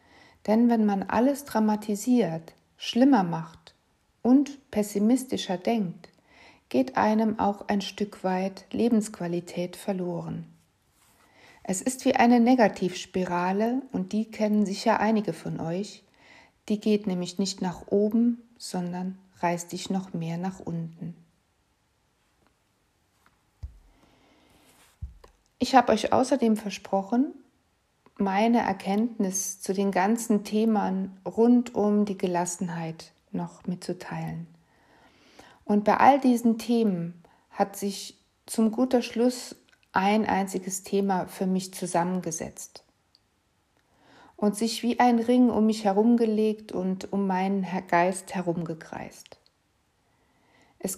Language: German